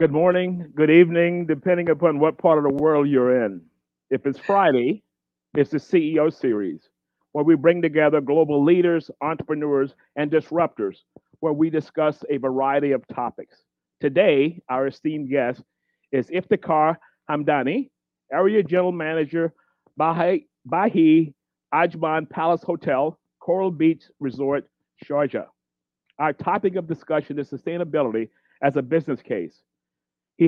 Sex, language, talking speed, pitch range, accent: male, English, 130 wpm, 140-170 Hz, American